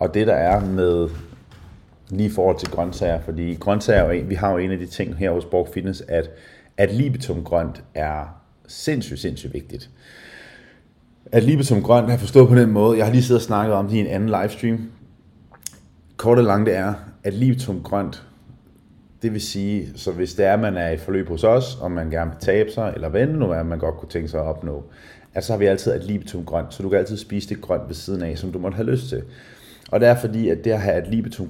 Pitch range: 90-110 Hz